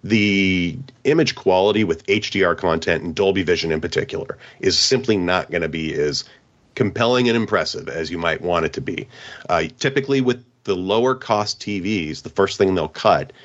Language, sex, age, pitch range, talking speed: English, male, 40-59, 100-125 Hz, 175 wpm